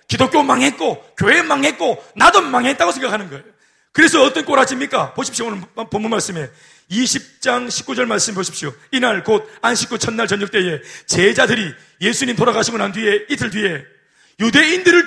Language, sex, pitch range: Korean, male, 195-275 Hz